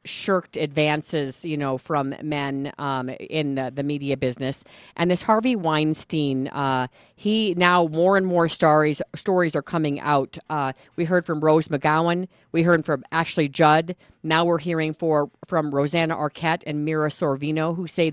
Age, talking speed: 40-59, 165 wpm